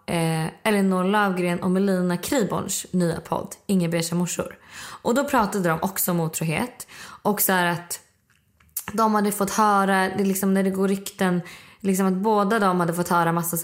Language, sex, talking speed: Swedish, female, 165 wpm